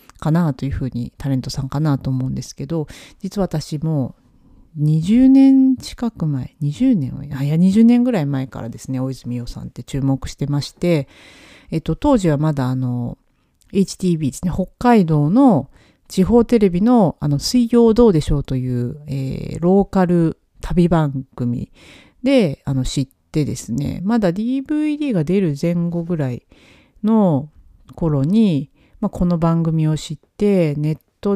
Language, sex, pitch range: Japanese, female, 135-185 Hz